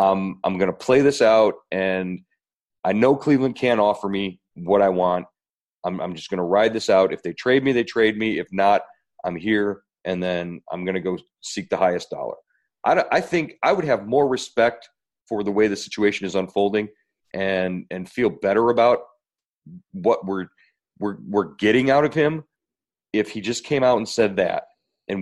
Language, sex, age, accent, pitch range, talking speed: English, male, 40-59, American, 95-120 Hz, 195 wpm